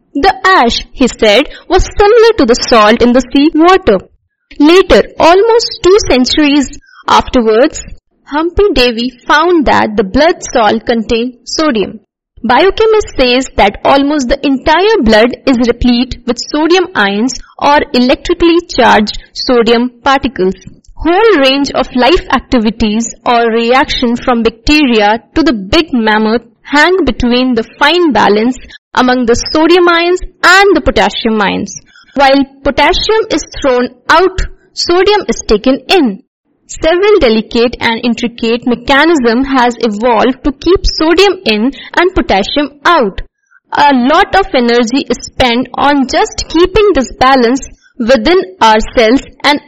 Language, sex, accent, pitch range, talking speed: English, female, Indian, 240-335 Hz, 130 wpm